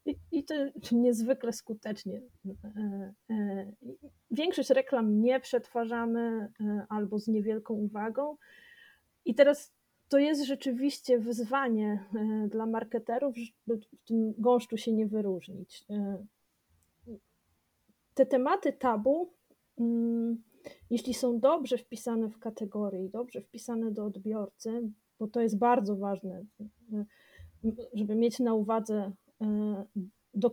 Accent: native